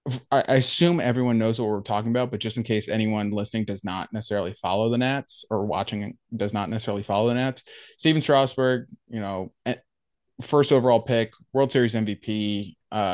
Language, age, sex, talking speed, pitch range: English, 20-39, male, 180 wpm, 105-125 Hz